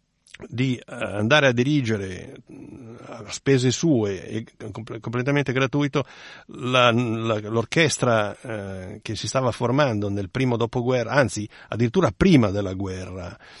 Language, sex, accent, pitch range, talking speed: Italian, male, native, 105-125 Hz, 120 wpm